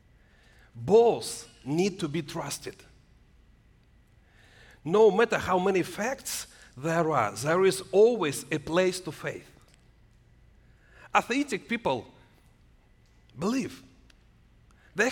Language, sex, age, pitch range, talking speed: English, male, 40-59, 125-205 Hz, 90 wpm